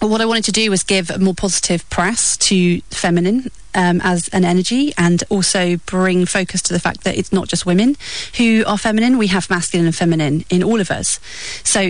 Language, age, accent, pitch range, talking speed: English, 30-49, British, 170-200 Hz, 210 wpm